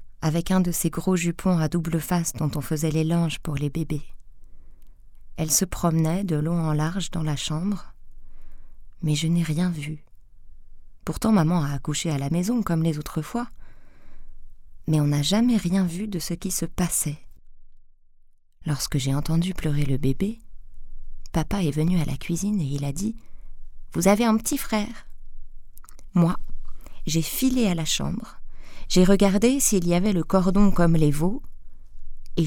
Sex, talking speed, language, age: female, 170 wpm, French, 20-39